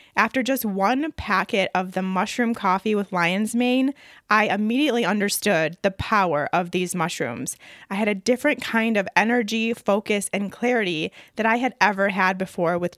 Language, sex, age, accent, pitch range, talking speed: English, female, 20-39, American, 185-225 Hz, 165 wpm